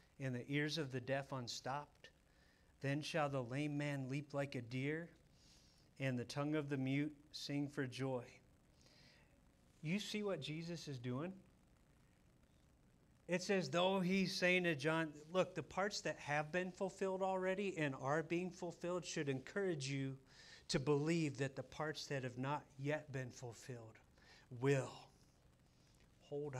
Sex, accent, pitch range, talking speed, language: male, American, 120-150 Hz, 150 wpm, English